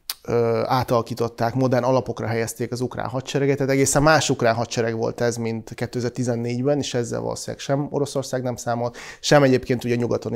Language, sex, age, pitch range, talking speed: Hungarian, male, 30-49, 120-140 Hz, 155 wpm